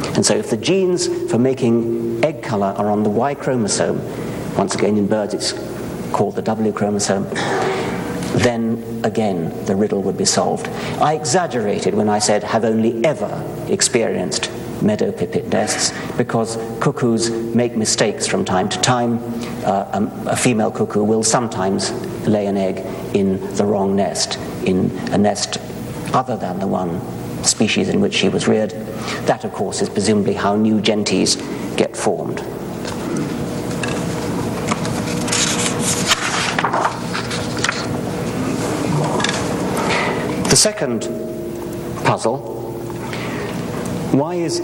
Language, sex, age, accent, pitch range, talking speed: English, male, 60-79, British, 80-115 Hz, 120 wpm